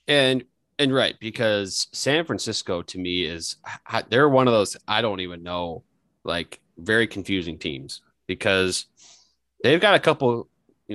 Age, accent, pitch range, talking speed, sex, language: 30-49, American, 85-115 Hz, 150 wpm, male, English